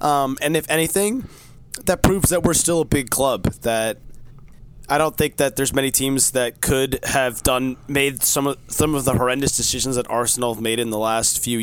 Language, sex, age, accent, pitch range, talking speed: English, male, 20-39, American, 115-135 Hz, 205 wpm